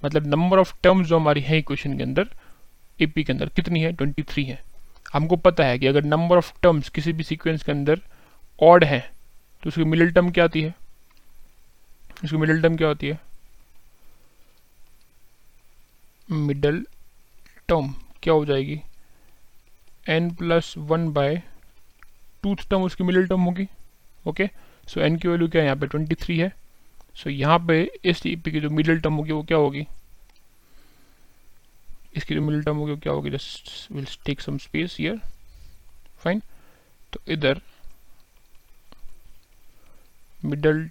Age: 30-49